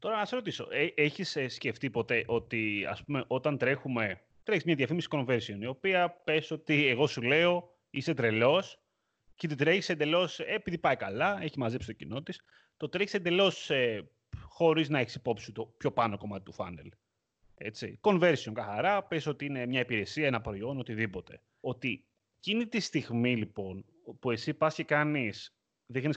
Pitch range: 115-155 Hz